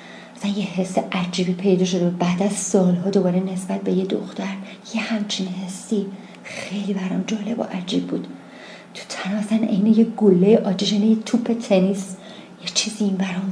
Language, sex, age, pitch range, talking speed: English, female, 40-59, 185-215 Hz, 155 wpm